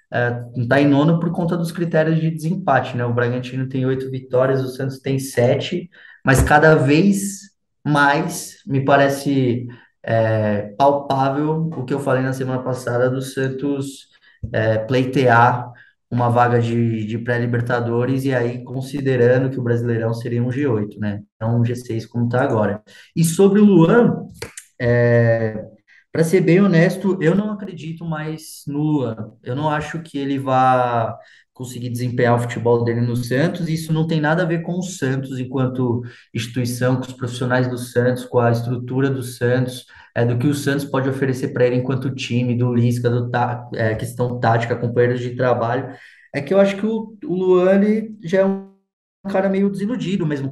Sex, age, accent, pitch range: male, 20-39, Brazilian, 120-150 Hz